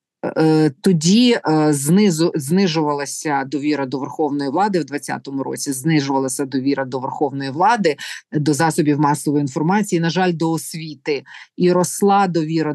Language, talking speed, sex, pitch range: Ukrainian, 125 wpm, female, 145-180 Hz